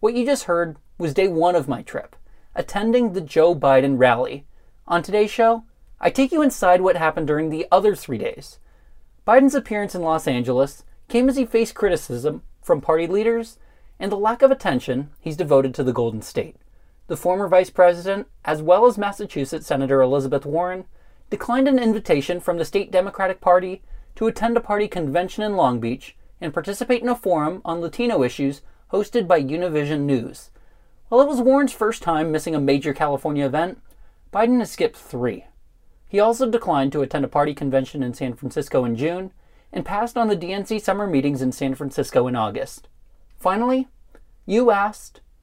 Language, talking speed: English, 180 wpm